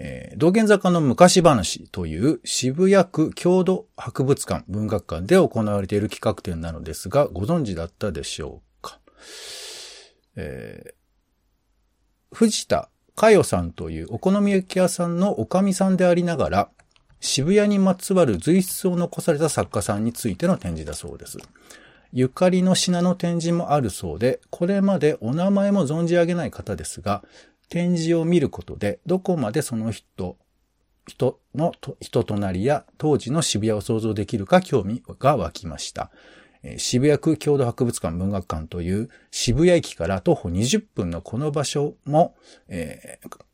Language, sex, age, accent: Japanese, male, 40-59, native